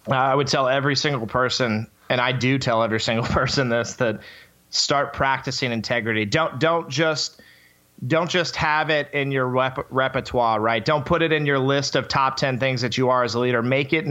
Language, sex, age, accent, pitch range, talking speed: English, male, 30-49, American, 120-150 Hz, 205 wpm